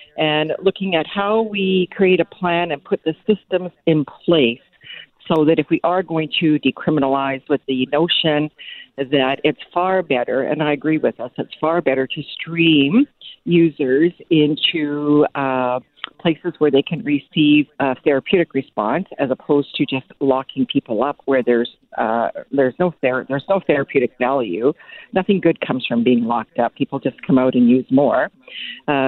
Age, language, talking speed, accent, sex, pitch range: 50-69, English, 165 wpm, American, female, 135-165 Hz